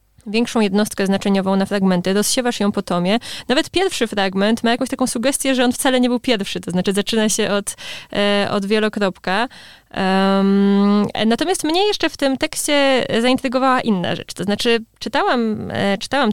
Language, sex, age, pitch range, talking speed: Polish, female, 20-39, 200-260 Hz, 155 wpm